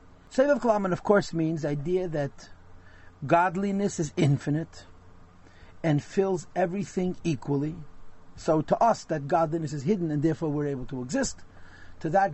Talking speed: 145 wpm